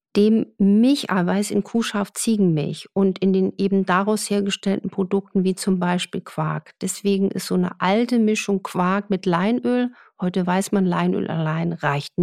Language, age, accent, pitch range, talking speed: German, 50-69, German, 180-215 Hz, 145 wpm